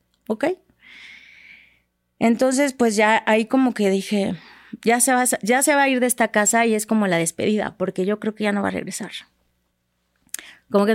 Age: 30-49